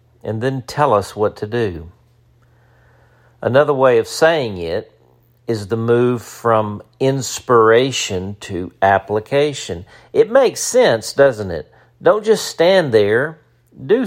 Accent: American